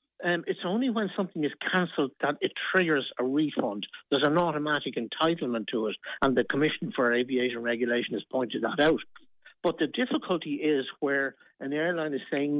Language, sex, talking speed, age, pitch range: English, male, 175 wpm, 60-79, 130-160 Hz